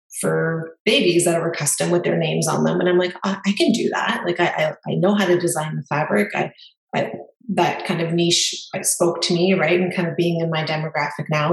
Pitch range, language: 170-190 Hz, English